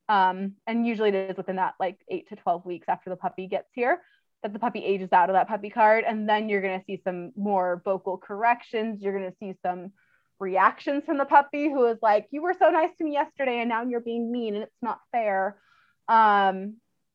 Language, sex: English, female